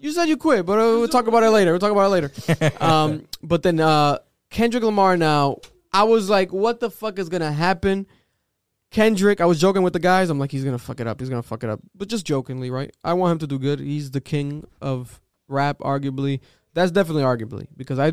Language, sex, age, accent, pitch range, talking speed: English, male, 20-39, American, 135-185 Hz, 245 wpm